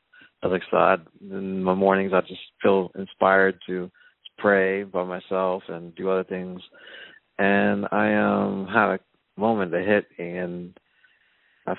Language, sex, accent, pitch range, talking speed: English, male, American, 90-100 Hz, 155 wpm